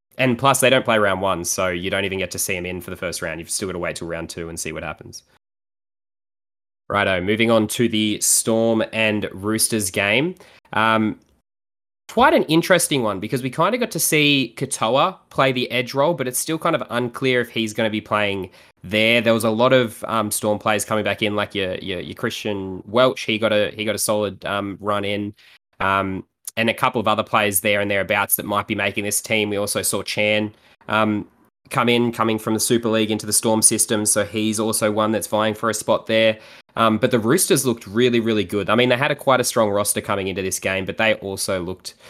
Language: English